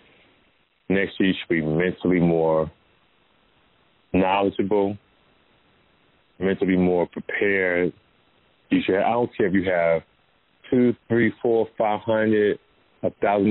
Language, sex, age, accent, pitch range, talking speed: English, male, 40-59, American, 85-105 Hz, 115 wpm